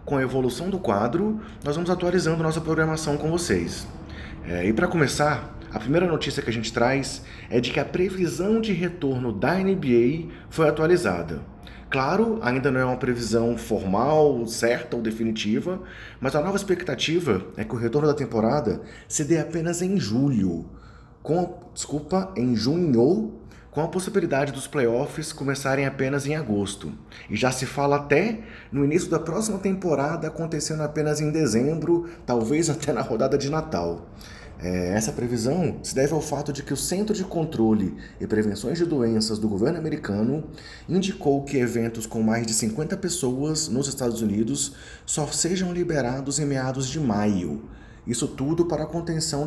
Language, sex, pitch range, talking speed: Portuguese, male, 115-160 Hz, 165 wpm